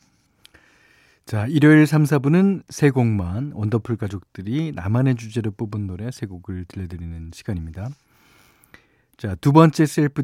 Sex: male